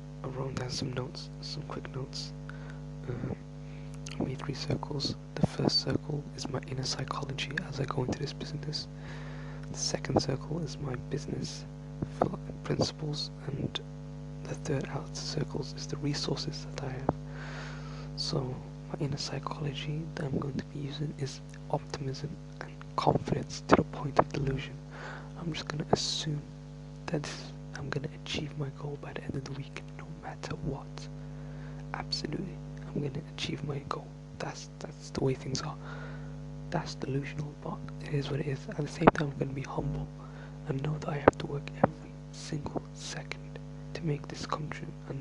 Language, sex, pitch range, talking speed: English, male, 140-145 Hz, 175 wpm